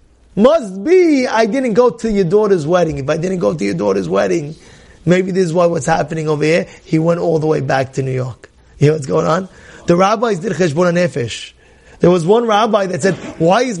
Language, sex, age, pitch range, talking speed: English, male, 30-49, 170-205 Hz, 225 wpm